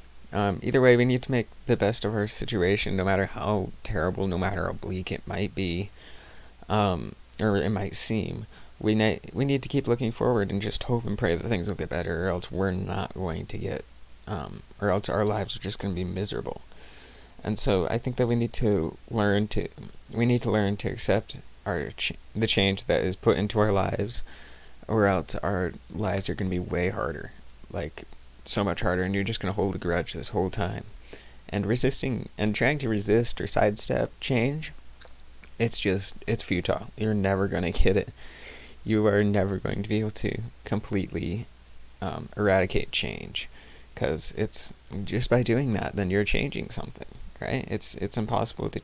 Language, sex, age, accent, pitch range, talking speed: English, male, 20-39, American, 90-115 Hz, 200 wpm